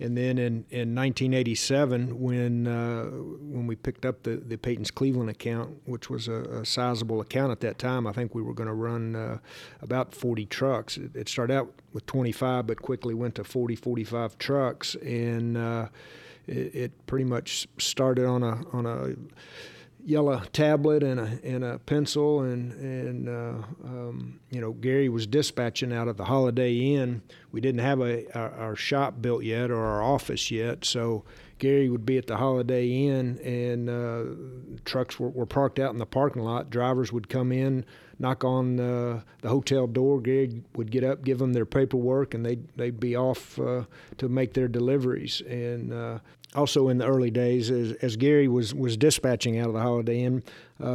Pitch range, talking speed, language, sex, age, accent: 115-130 Hz, 190 wpm, English, male, 50-69, American